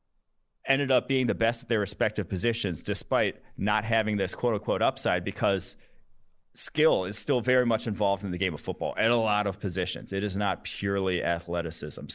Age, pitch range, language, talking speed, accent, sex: 30-49, 95-110 Hz, English, 185 wpm, American, male